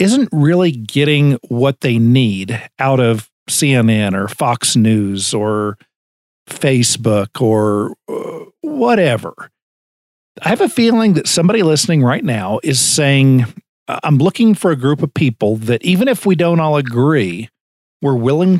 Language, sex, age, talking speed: English, male, 50-69, 140 wpm